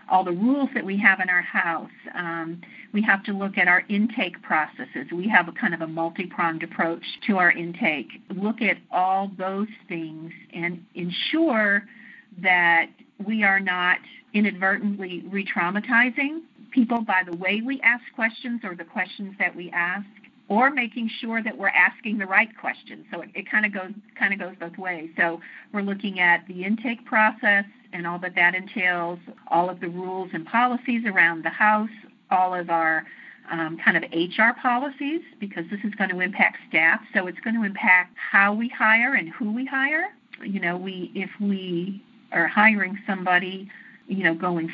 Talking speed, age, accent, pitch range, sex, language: 180 wpm, 50-69, American, 180-225 Hz, female, English